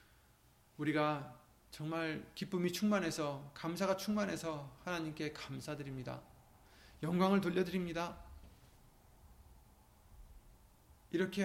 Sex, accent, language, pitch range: male, native, Korean, 120-185 Hz